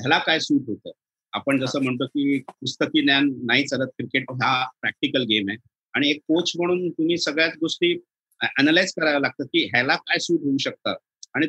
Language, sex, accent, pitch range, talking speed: Marathi, male, native, 130-170 Hz, 185 wpm